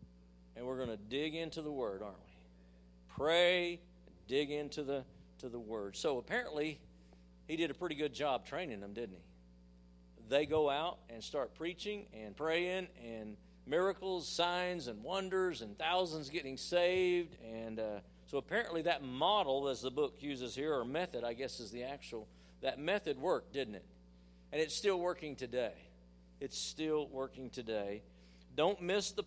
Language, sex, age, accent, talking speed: English, male, 50-69, American, 165 wpm